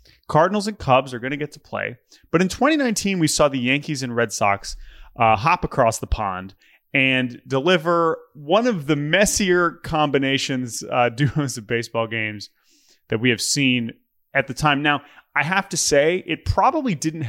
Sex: male